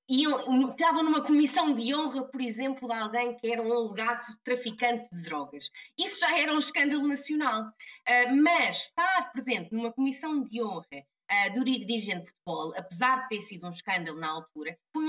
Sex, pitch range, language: female, 185-265 Hz, Portuguese